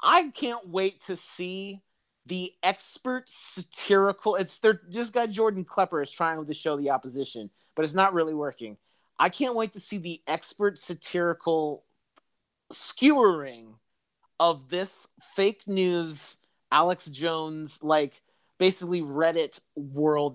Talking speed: 130 wpm